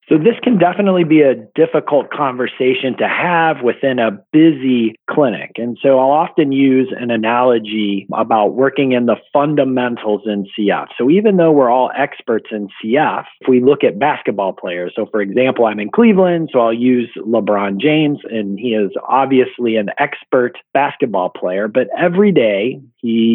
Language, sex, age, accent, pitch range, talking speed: English, male, 30-49, American, 115-145 Hz, 165 wpm